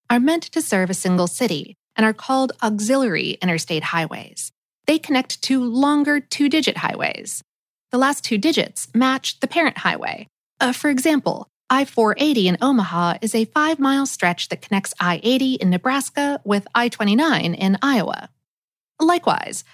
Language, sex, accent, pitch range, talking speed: English, female, American, 190-275 Hz, 145 wpm